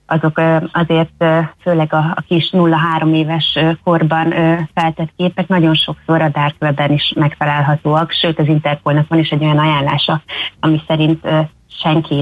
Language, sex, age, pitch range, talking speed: Hungarian, female, 30-49, 155-185 Hz, 140 wpm